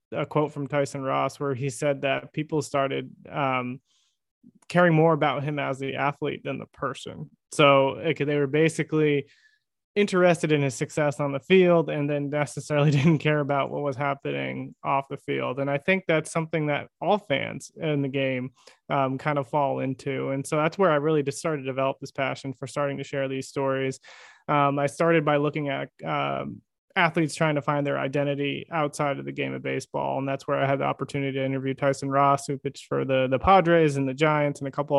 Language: English